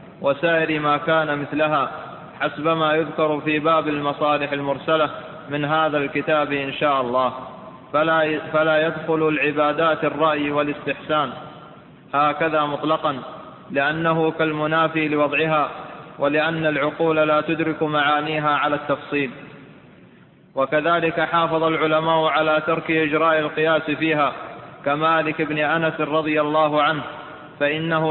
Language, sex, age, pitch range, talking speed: Arabic, male, 20-39, 150-160 Hz, 100 wpm